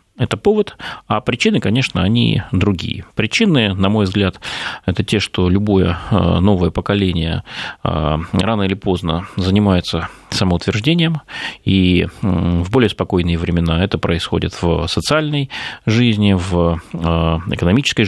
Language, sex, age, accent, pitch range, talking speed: Russian, male, 30-49, native, 85-110 Hz, 115 wpm